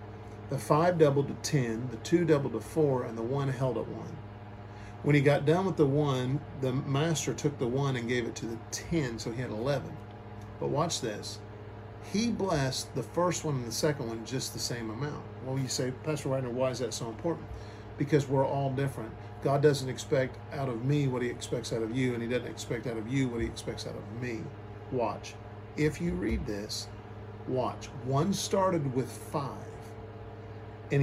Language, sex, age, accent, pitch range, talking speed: English, male, 40-59, American, 105-140 Hz, 200 wpm